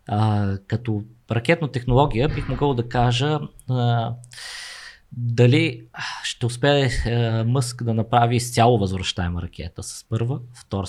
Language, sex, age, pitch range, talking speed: Bulgarian, male, 20-39, 100-125 Hz, 120 wpm